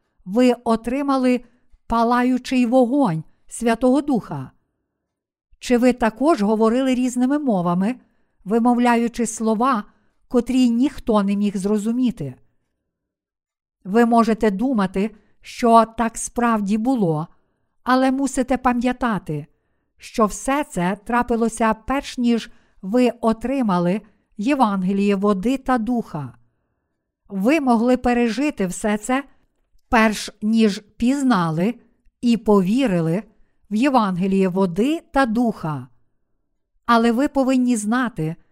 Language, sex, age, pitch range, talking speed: Ukrainian, female, 50-69, 205-250 Hz, 95 wpm